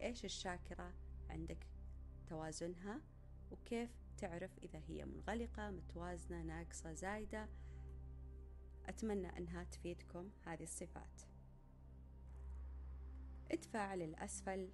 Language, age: Arabic, 30-49